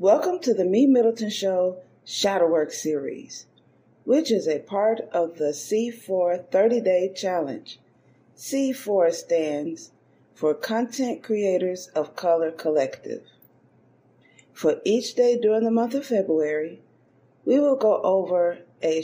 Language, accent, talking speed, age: English, American, 125 wpm, 40-59